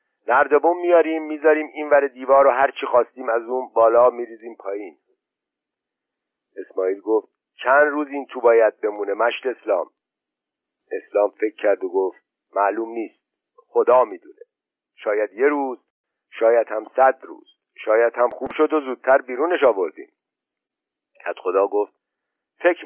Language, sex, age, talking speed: Persian, male, 50-69, 135 wpm